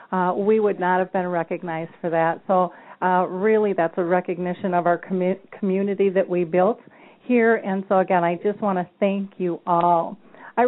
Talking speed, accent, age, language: 190 wpm, American, 50-69, English